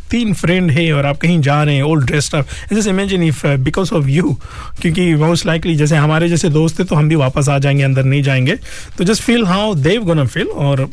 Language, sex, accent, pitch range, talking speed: Hindi, male, native, 140-175 Hz, 240 wpm